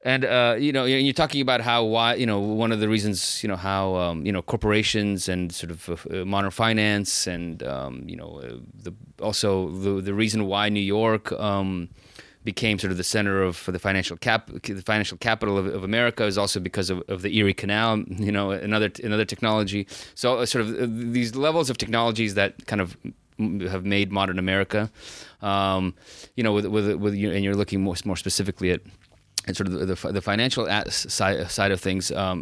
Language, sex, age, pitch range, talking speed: English, male, 30-49, 95-115 Hz, 205 wpm